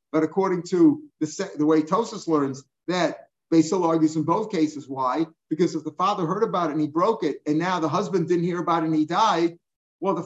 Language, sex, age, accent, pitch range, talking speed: English, male, 50-69, American, 155-180 Hz, 235 wpm